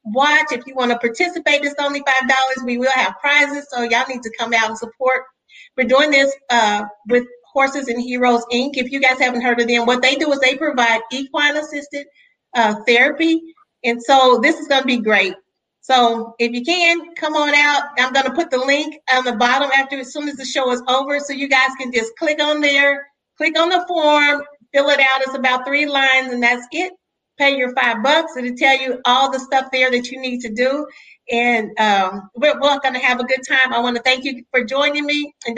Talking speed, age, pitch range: 235 wpm, 40-59, 245-285 Hz